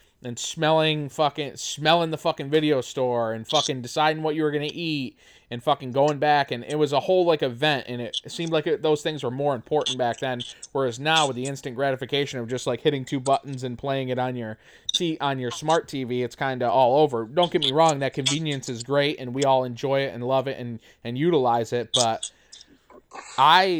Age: 20-39